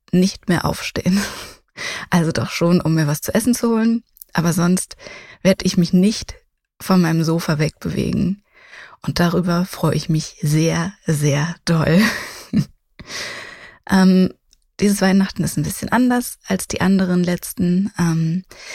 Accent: German